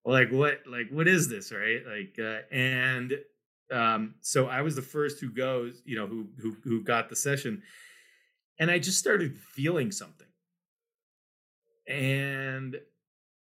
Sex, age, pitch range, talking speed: male, 30-49, 120-170 Hz, 145 wpm